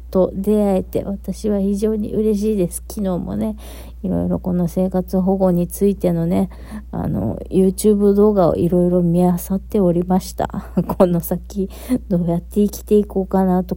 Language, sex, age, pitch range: Japanese, female, 40-59, 160-215 Hz